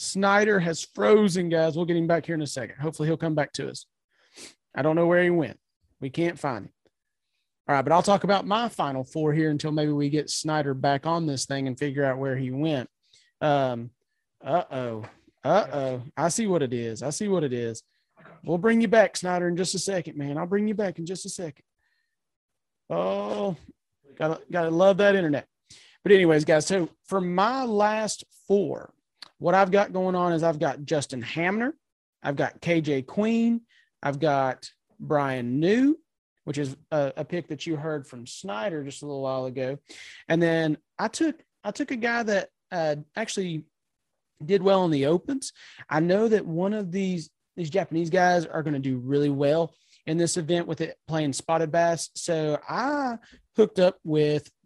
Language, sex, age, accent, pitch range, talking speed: English, male, 30-49, American, 145-195 Hz, 195 wpm